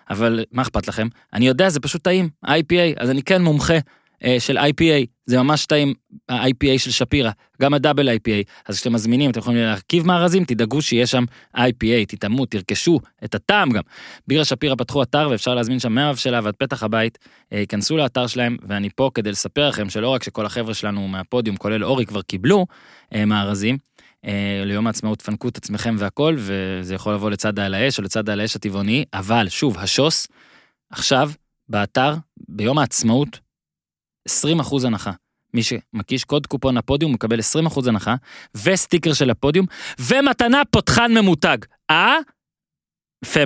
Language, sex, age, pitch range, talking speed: Hebrew, male, 20-39, 110-145 Hz, 160 wpm